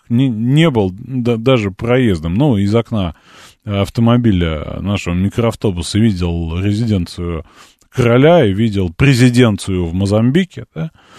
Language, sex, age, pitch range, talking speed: Russian, male, 30-49, 95-130 Hz, 100 wpm